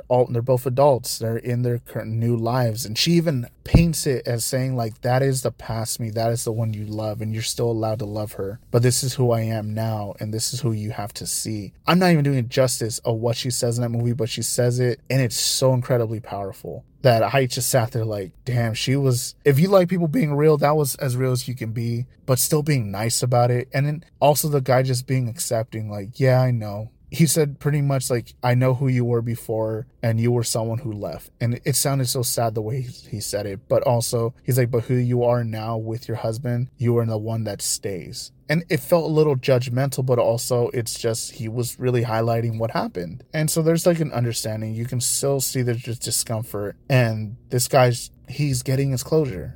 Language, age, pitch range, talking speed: English, 20-39, 115-135 Hz, 235 wpm